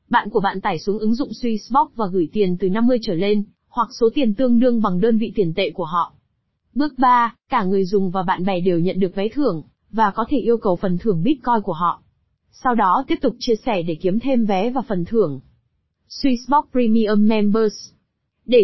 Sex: female